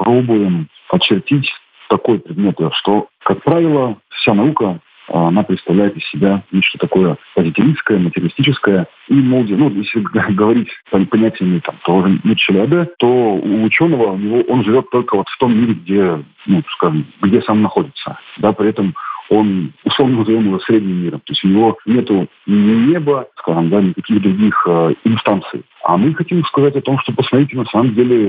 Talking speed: 155 wpm